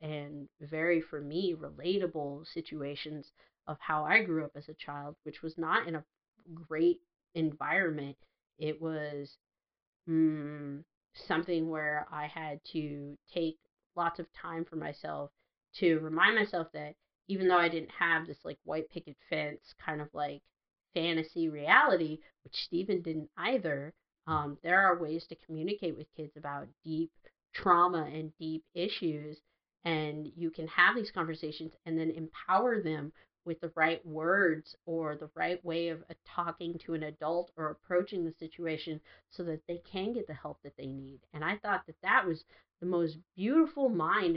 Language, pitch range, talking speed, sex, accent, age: English, 155-175 Hz, 160 wpm, female, American, 30-49